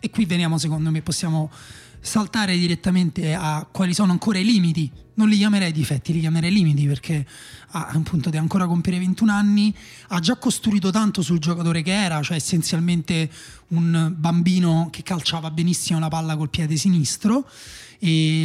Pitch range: 160-200 Hz